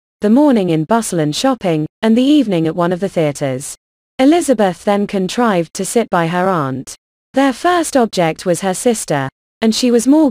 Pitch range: 155-235 Hz